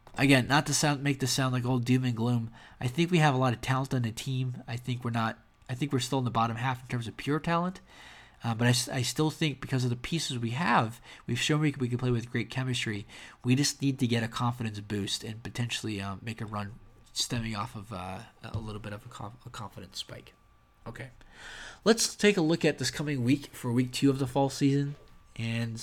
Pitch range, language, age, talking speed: 115-135 Hz, English, 20-39, 245 wpm